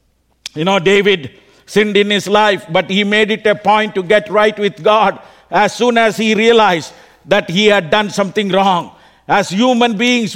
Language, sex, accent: English, male, Indian